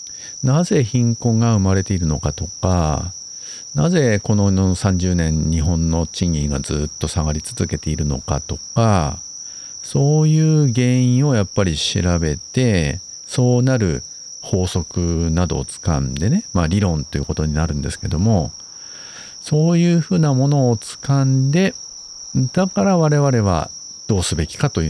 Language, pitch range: Japanese, 80-120 Hz